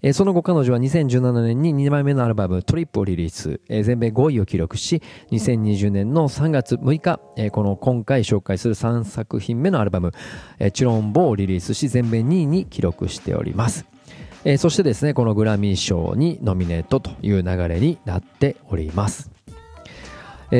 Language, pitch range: Japanese, 100-130 Hz